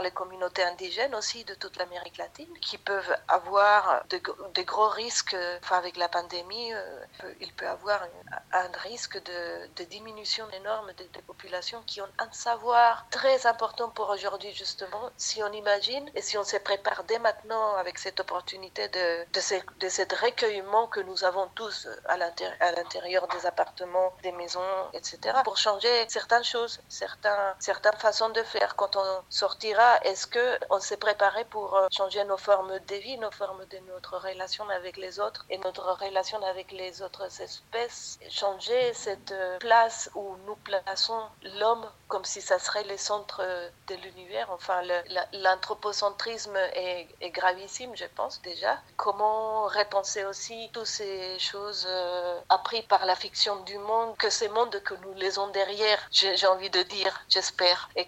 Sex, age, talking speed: female, 40-59, 170 wpm